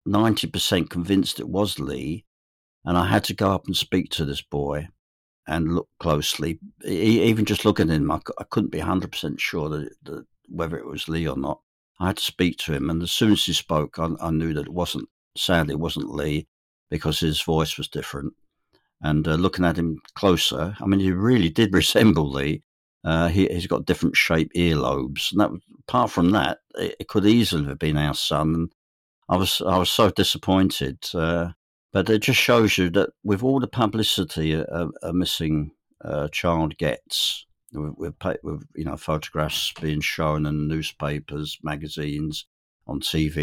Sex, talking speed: male, 185 wpm